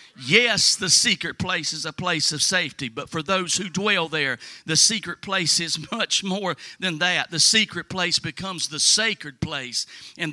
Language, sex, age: English, male, 50-69